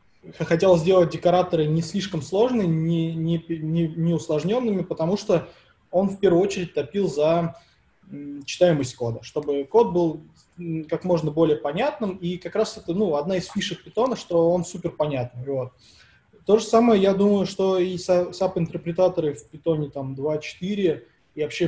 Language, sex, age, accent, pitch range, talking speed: Russian, male, 20-39, native, 145-180 Hz, 160 wpm